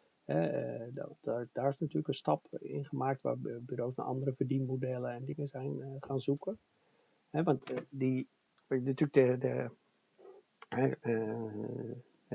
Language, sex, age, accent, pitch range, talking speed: Dutch, male, 50-69, Dutch, 125-145 Hz, 135 wpm